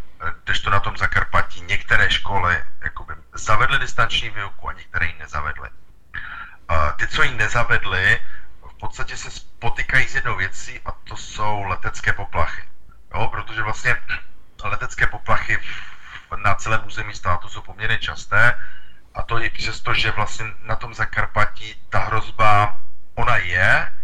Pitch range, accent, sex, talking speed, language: 95-110 Hz, native, male, 145 wpm, Czech